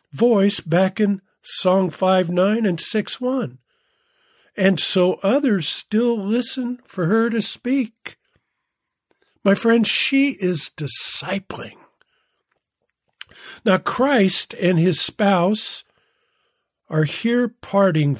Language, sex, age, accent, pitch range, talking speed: English, male, 50-69, American, 150-215 Hz, 100 wpm